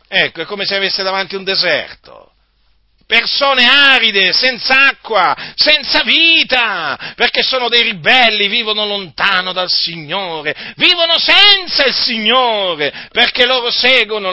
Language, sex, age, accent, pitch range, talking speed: Italian, male, 40-59, native, 195-265 Hz, 120 wpm